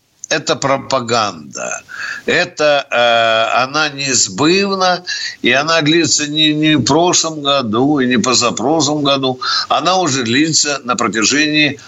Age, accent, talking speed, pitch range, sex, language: 60-79, native, 120 wpm, 130-180 Hz, male, Russian